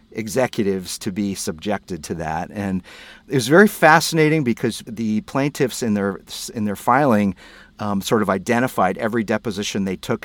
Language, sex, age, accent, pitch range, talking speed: English, male, 40-59, American, 100-120 Hz, 160 wpm